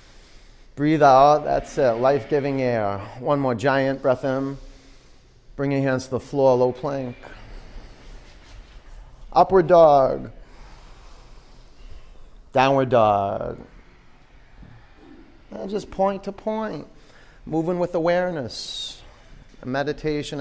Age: 30-49